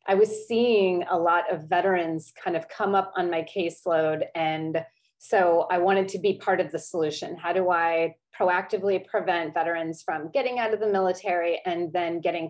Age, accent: 30-49, American